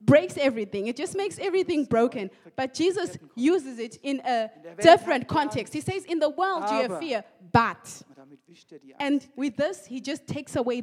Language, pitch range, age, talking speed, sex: German, 245-325 Hz, 20-39, 175 wpm, female